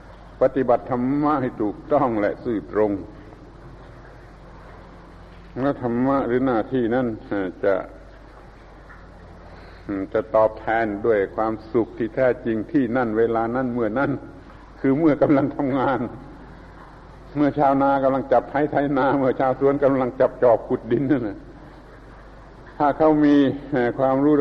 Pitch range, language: 110-135 Hz, Thai